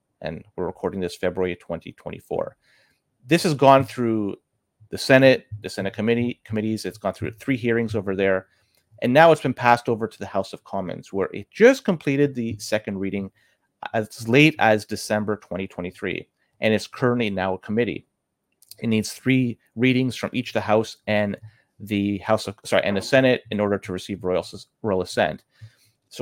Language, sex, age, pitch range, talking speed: English, male, 30-49, 100-125 Hz, 175 wpm